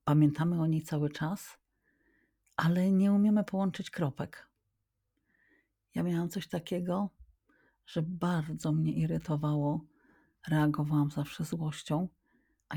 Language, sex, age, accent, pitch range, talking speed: Polish, female, 50-69, native, 140-160 Hz, 105 wpm